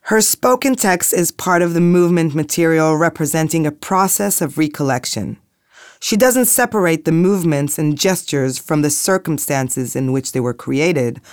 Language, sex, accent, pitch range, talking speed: Hebrew, female, American, 145-195 Hz, 155 wpm